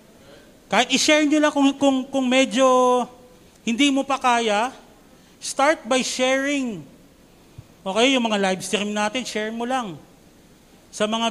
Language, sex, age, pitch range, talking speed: Filipino, male, 40-59, 215-275 Hz, 140 wpm